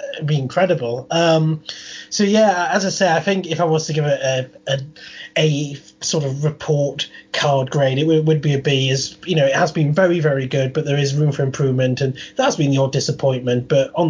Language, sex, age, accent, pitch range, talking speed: English, male, 20-39, British, 140-165 Hz, 220 wpm